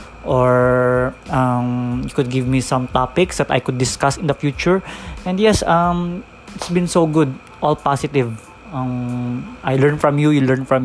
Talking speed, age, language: 175 wpm, 20-39, English